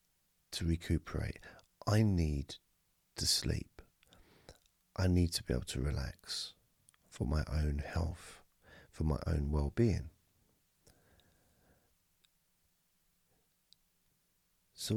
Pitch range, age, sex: 75-90 Hz, 40-59, male